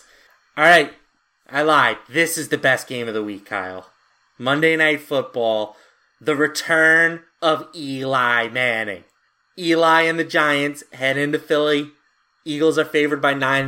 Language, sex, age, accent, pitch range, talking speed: English, male, 30-49, American, 125-145 Hz, 145 wpm